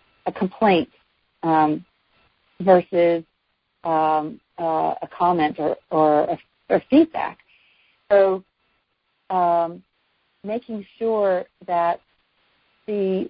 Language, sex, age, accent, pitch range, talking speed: English, female, 40-59, American, 170-195 Hz, 85 wpm